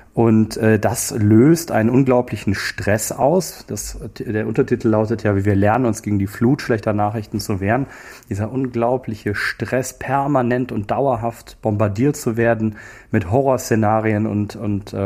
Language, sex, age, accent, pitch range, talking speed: German, male, 30-49, German, 105-125 Hz, 145 wpm